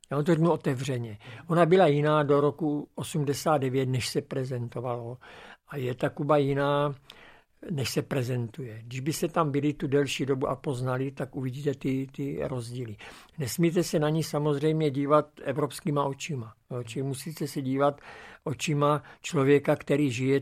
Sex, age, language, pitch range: male, 60-79, Slovak, 130-150 Hz